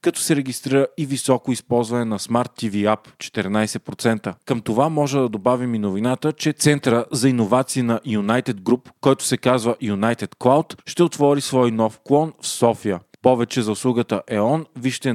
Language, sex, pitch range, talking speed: Bulgarian, male, 115-140 Hz, 165 wpm